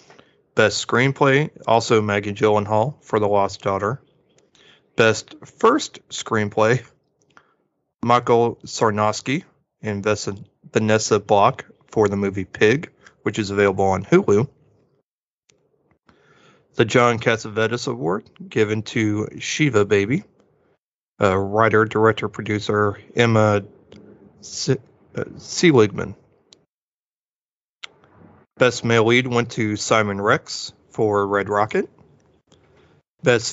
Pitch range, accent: 105-130 Hz, American